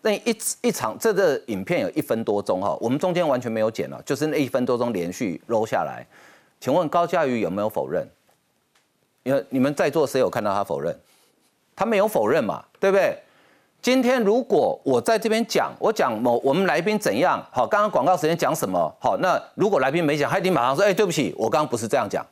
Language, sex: Chinese, male